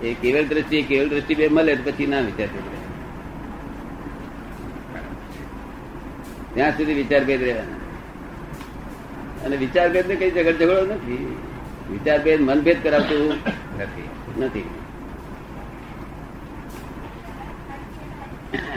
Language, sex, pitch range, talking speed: Gujarati, male, 125-160 Hz, 30 wpm